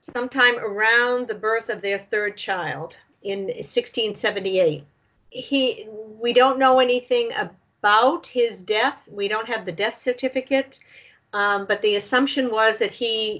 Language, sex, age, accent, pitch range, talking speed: English, female, 50-69, American, 195-245 Hz, 140 wpm